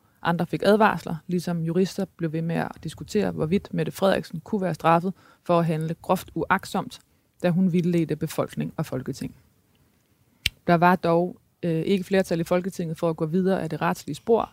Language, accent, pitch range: Danish, native, 155-185 Hz